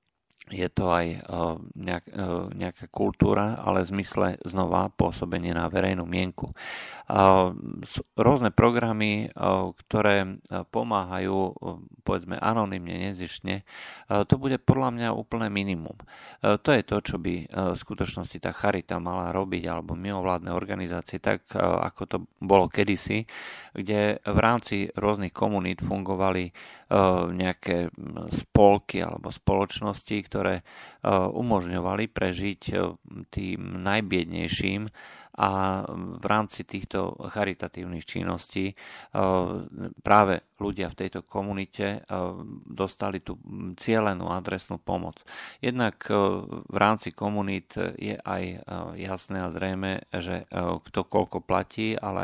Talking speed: 105 wpm